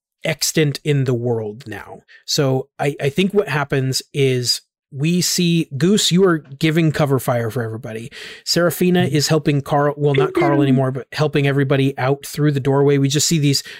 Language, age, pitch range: English, 30-49, 135-150 Hz